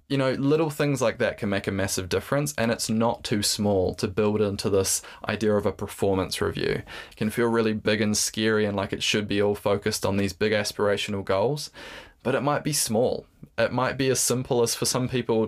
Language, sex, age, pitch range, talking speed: English, male, 20-39, 100-120 Hz, 225 wpm